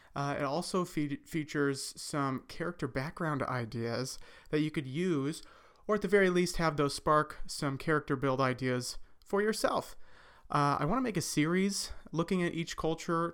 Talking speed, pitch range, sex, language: 170 wpm, 140-165 Hz, male, English